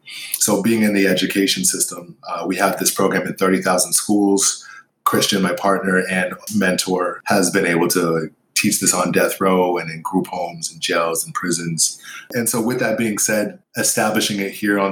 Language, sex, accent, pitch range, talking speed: English, male, American, 90-100 Hz, 185 wpm